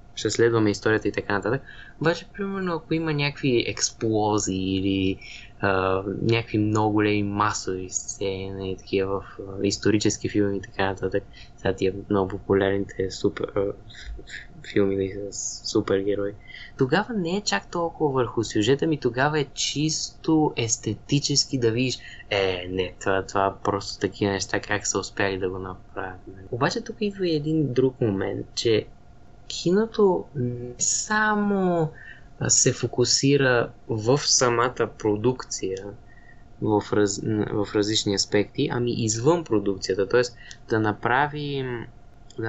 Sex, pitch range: male, 100-130 Hz